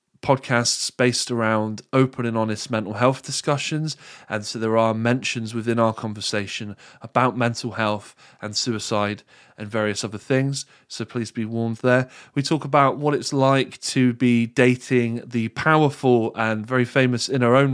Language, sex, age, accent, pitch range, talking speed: English, male, 20-39, British, 110-130 Hz, 160 wpm